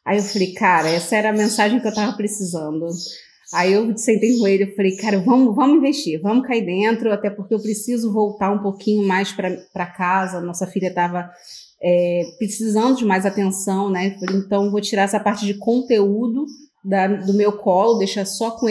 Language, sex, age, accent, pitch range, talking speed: Portuguese, female, 30-49, Brazilian, 195-245 Hz, 200 wpm